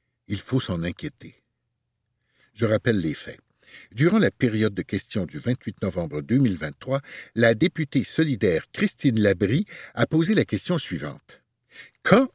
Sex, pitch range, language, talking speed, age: male, 105-150 Hz, French, 135 wpm, 60-79